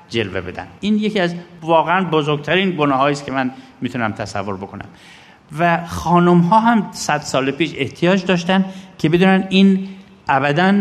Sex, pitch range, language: male, 125-175 Hz, Persian